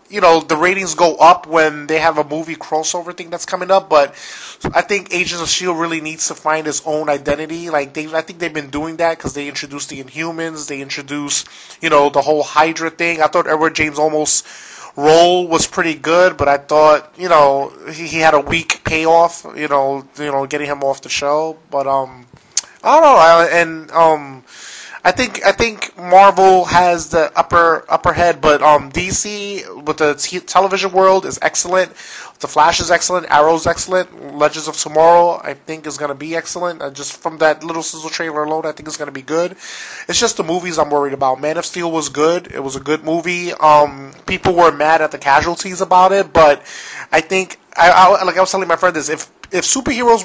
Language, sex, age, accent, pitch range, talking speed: English, male, 20-39, American, 150-175 Hz, 215 wpm